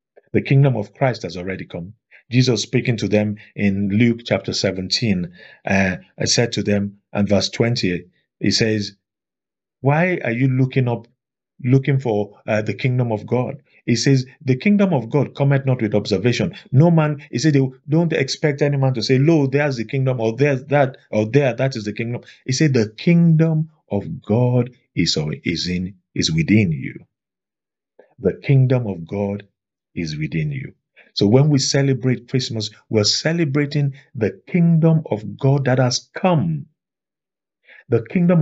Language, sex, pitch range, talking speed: English, male, 105-145 Hz, 165 wpm